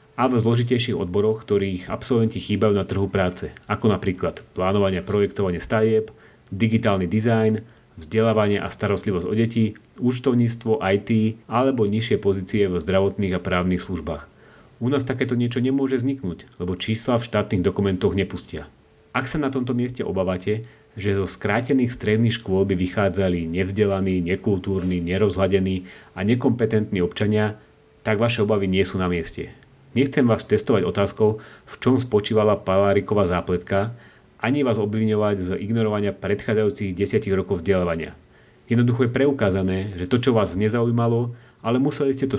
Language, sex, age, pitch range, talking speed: Slovak, male, 30-49, 95-115 Hz, 140 wpm